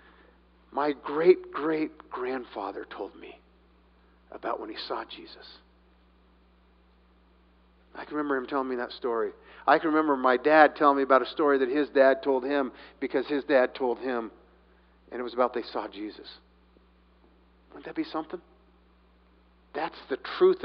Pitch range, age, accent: 130-215 Hz, 50-69, American